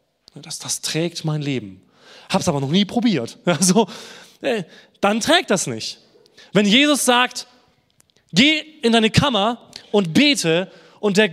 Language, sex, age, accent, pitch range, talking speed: German, male, 20-39, German, 170-255 Hz, 140 wpm